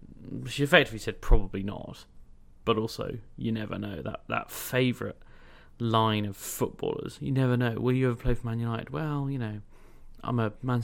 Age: 30-49